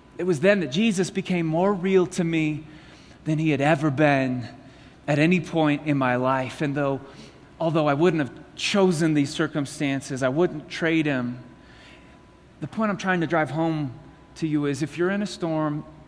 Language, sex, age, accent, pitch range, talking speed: English, male, 30-49, American, 140-180 Hz, 185 wpm